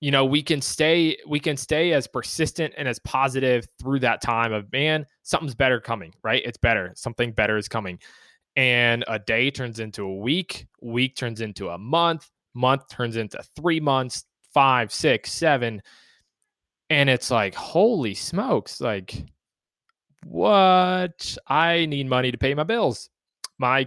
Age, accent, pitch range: 20-39, American, 120-150 Hz